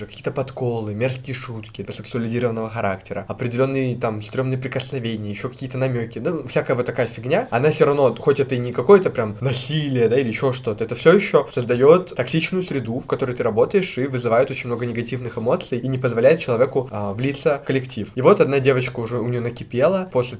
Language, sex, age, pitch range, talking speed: Russian, male, 20-39, 115-140 Hz, 190 wpm